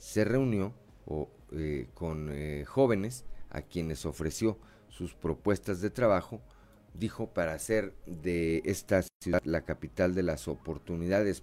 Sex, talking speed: male, 125 wpm